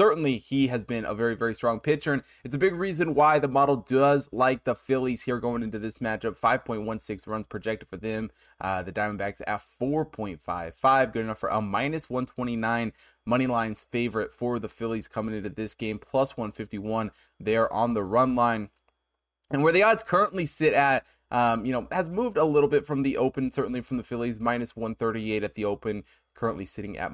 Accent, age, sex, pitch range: American, 20-39, male, 110-140 Hz